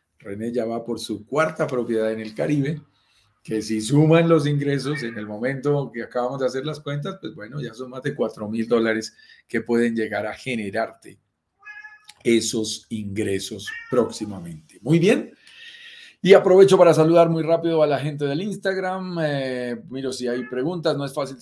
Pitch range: 120-155 Hz